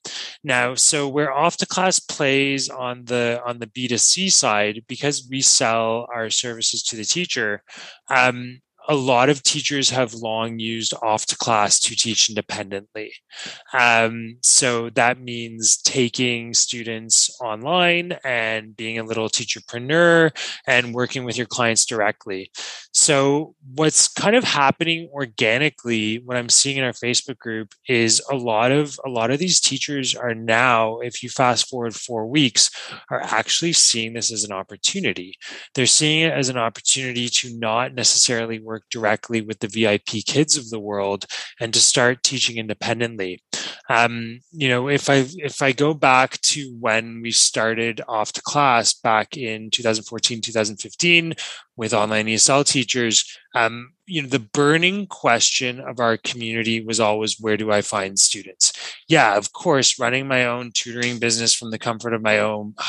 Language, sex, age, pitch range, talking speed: English, male, 20-39, 110-135 Hz, 160 wpm